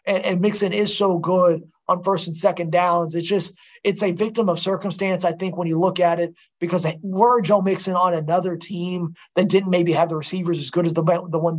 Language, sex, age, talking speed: English, male, 20-39, 235 wpm